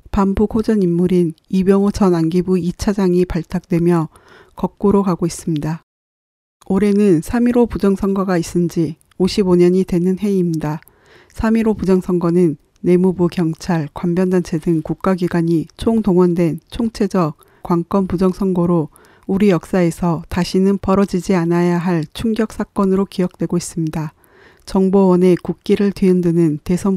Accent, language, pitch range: native, Korean, 170-200 Hz